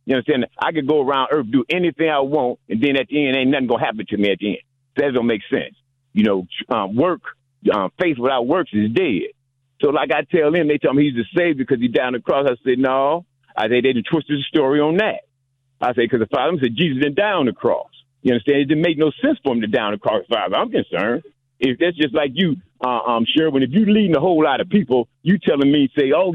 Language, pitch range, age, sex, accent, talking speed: English, 130-165 Hz, 50-69, male, American, 275 wpm